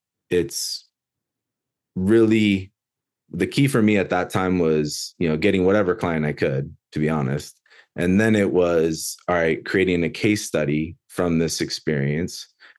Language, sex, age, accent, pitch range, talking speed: English, male, 20-39, American, 80-95 Hz, 155 wpm